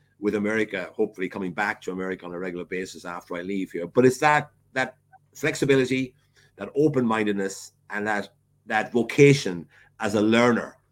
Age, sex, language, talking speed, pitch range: 50-69, male, English, 165 wpm, 100-130 Hz